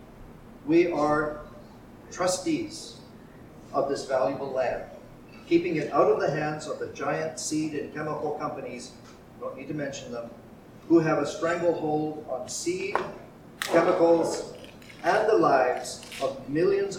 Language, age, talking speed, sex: English, 50-69, 130 wpm, male